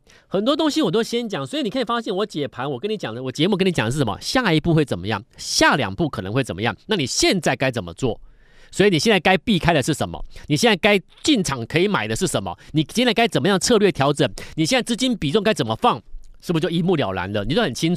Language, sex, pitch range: Chinese, male, 125-180 Hz